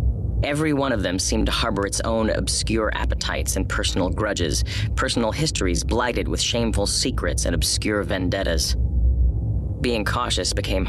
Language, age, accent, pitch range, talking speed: English, 30-49, American, 85-105 Hz, 145 wpm